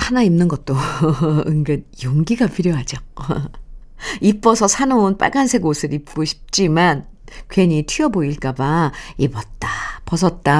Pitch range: 155-230 Hz